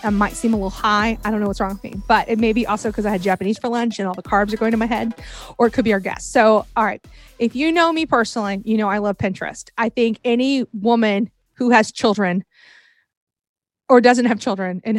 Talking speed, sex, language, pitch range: 255 wpm, female, English, 225-305 Hz